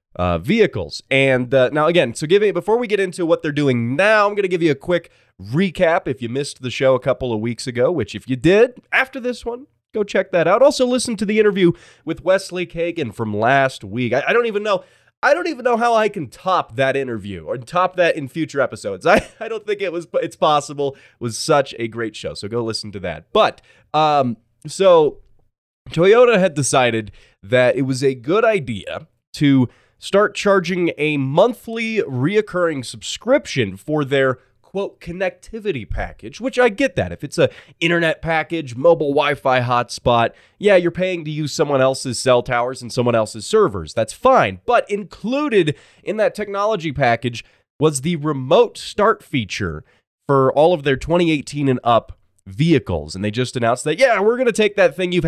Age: 20-39